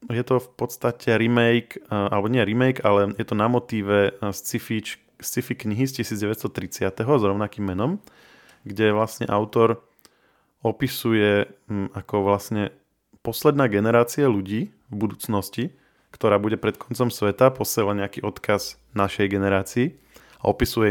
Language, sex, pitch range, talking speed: Slovak, male, 95-110 Hz, 125 wpm